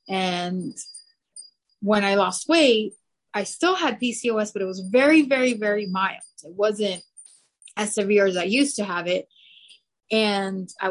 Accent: American